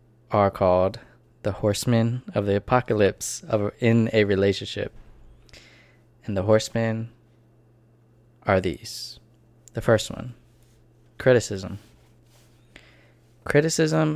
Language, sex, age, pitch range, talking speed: English, male, 20-39, 100-115 Hz, 90 wpm